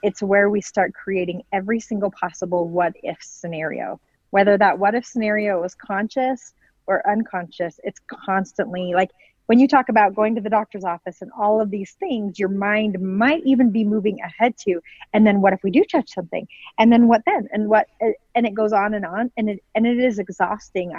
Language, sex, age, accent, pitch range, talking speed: English, female, 30-49, American, 185-230 Hz, 195 wpm